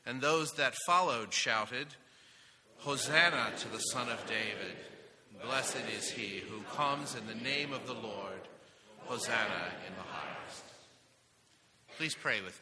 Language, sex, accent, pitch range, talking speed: English, male, American, 105-130 Hz, 140 wpm